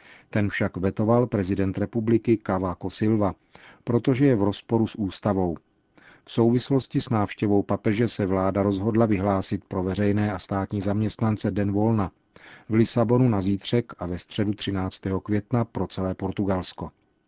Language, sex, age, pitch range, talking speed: Czech, male, 40-59, 100-115 Hz, 140 wpm